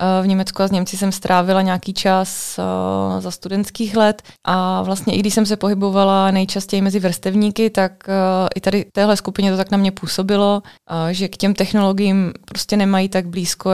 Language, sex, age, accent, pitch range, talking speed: Czech, female, 20-39, native, 180-200 Hz, 175 wpm